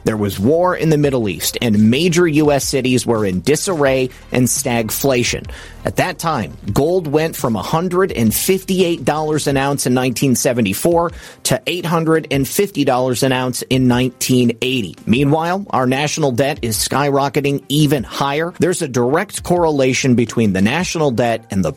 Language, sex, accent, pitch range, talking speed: English, male, American, 120-165 Hz, 140 wpm